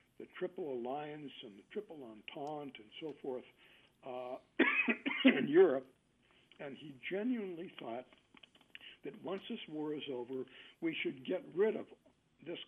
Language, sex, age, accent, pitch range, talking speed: English, male, 60-79, American, 120-185 Hz, 135 wpm